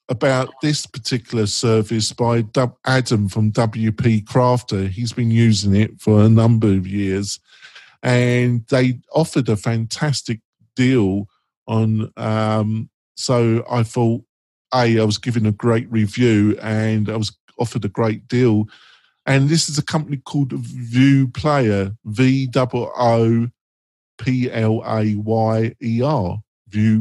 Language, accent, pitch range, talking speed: English, British, 110-135 Hz, 120 wpm